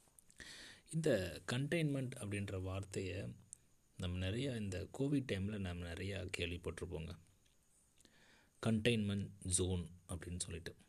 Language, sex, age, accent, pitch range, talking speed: Tamil, male, 30-49, native, 90-110 Hz, 90 wpm